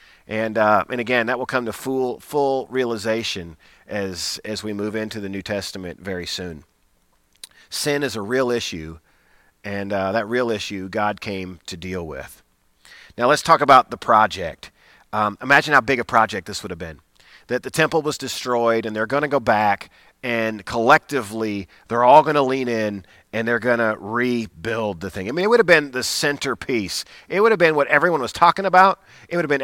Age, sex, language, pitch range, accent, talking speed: 40-59, male, English, 105-145 Hz, American, 200 wpm